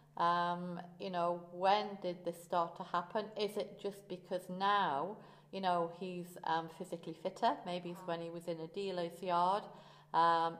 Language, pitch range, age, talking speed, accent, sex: English, 170-195 Hz, 40-59, 170 wpm, British, female